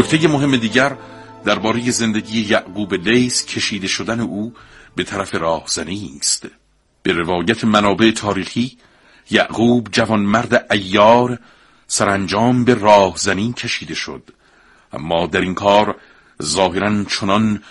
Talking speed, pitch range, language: 110 wpm, 95-115 Hz, Persian